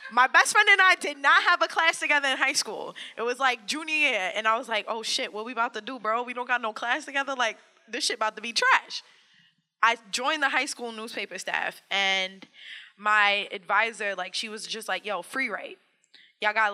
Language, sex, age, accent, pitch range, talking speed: English, female, 20-39, American, 190-245 Hz, 230 wpm